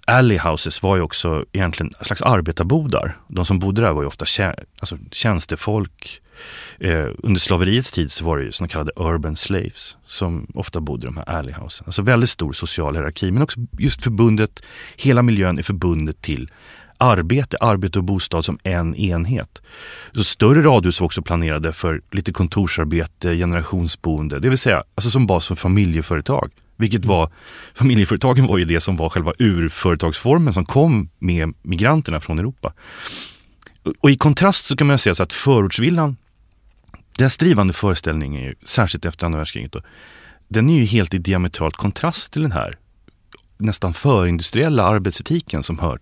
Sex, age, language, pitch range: male, 30-49, English, 85-115 Hz